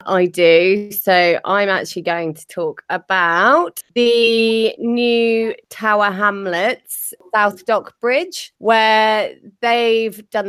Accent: British